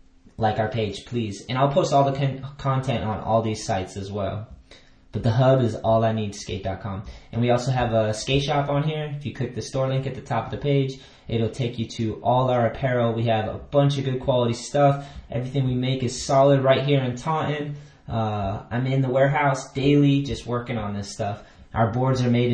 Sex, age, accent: male, 20-39, American